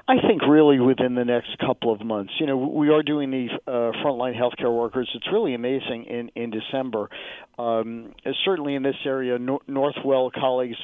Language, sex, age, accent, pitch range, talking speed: English, male, 50-69, American, 125-145 Hz, 185 wpm